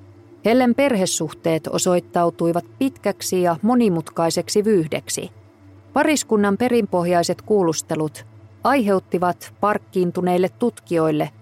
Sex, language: female, Finnish